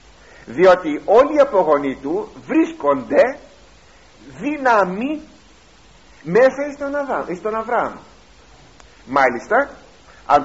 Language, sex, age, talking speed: Greek, male, 50-69, 70 wpm